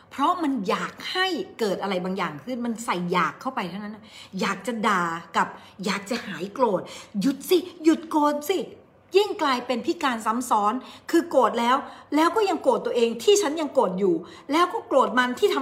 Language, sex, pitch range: Thai, female, 200-285 Hz